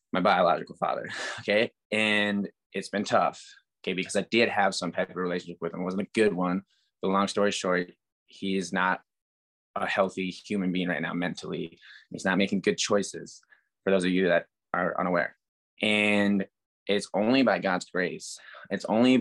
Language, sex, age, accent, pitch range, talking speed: English, male, 20-39, American, 90-105 Hz, 180 wpm